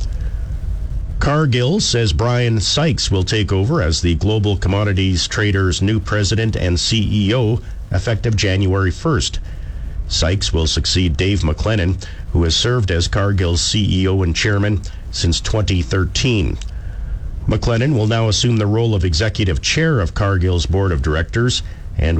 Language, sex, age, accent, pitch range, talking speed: English, male, 50-69, American, 85-110 Hz, 130 wpm